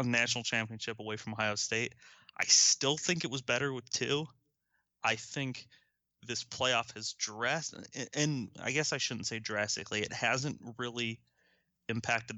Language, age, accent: English, 20-39, American